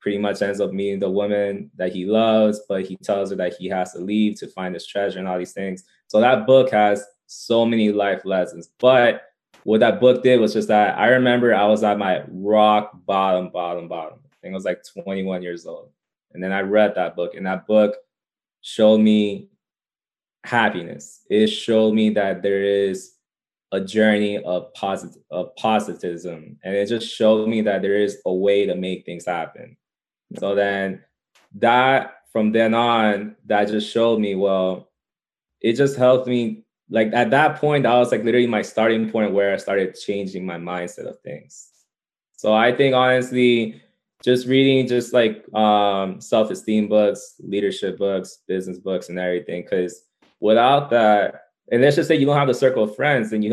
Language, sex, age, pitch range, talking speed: English, male, 20-39, 95-115 Hz, 185 wpm